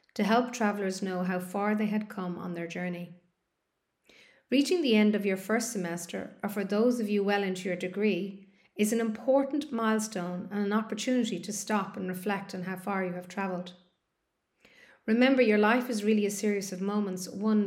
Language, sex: English, female